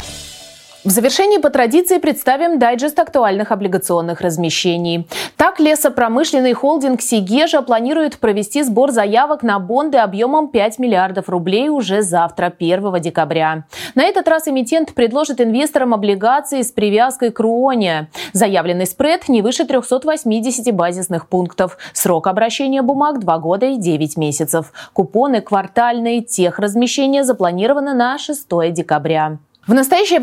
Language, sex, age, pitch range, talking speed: Russian, female, 20-39, 190-280 Hz, 125 wpm